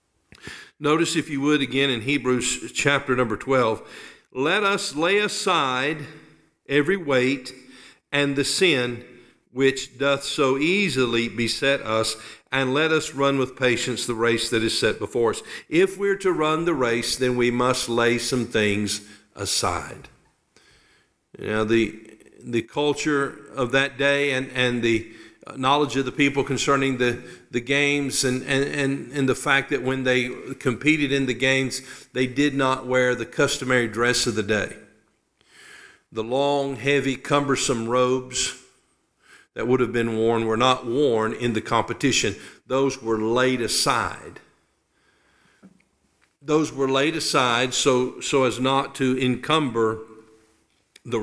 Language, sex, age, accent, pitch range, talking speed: English, male, 50-69, American, 120-140 Hz, 145 wpm